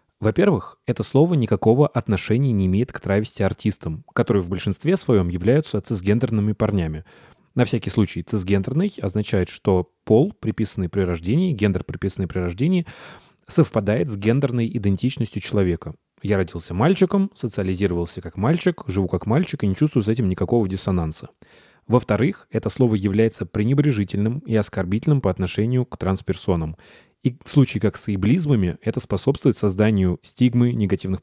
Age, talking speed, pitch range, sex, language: 20-39, 140 wpm, 95-120 Hz, male, Russian